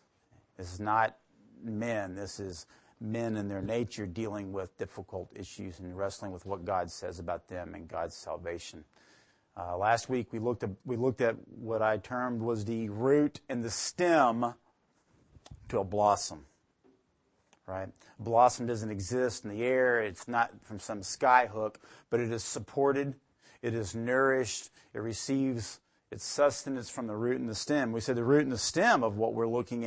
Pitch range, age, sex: 105-135 Hz, 40-59, male